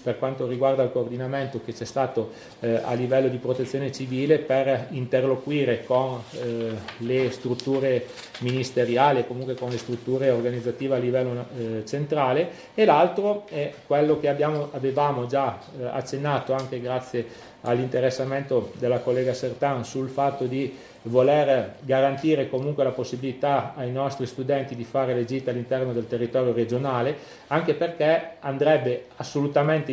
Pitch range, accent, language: 125-140 Hz, native, Italian